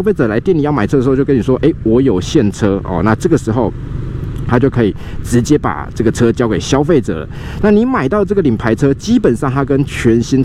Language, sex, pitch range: Chinese, male, 115-160 Hz